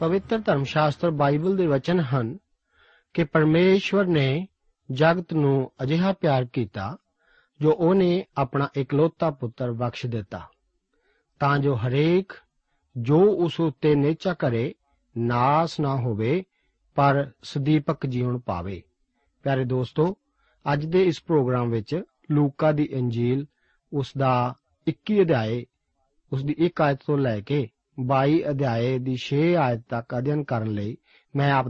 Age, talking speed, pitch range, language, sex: 40-59, 105 wpm, 130-165 Hz, Punjabi, male